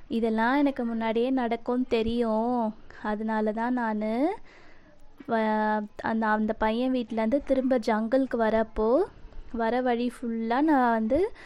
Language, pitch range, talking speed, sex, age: Tamil, 225-260 Hz, 105 wpm, female, 20-39